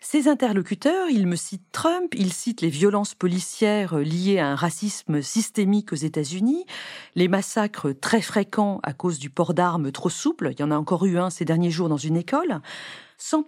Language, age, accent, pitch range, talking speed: French, 40-59, French, 175-250 Hz, 190 wpm